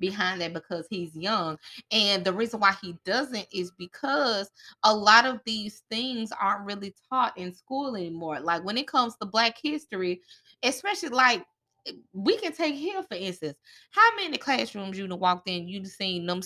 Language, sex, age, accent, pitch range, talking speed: English, female, 20-39, American, 175-230 Hz, 180 wpm